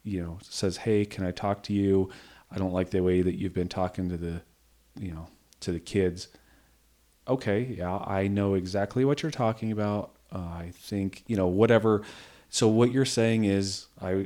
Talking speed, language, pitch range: 195 wpm, English, 90-105 Hz